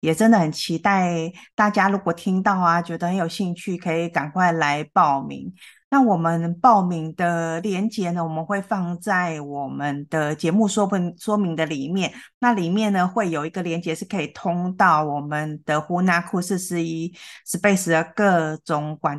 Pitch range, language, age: 155-195 Hz, Chinese, 30-49